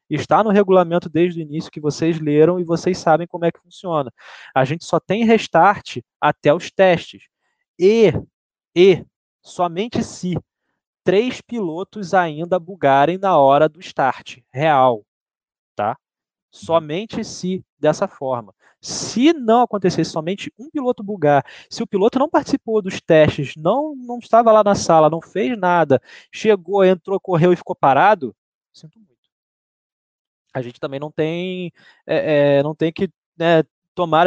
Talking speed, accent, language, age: 145 wpm, Brazilian, Portuguese, 20-39